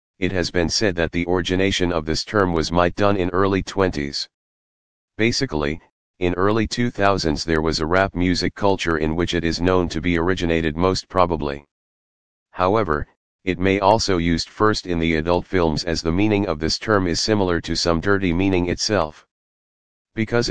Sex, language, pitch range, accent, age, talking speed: male, English, 80-95 Hz, American, 40-59, 175 wpm